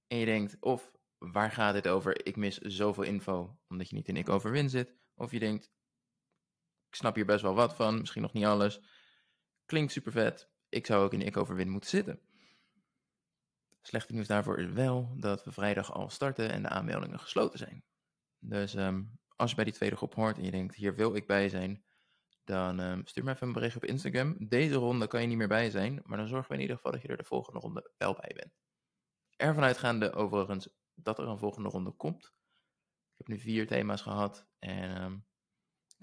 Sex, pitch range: male, 100-130 Hz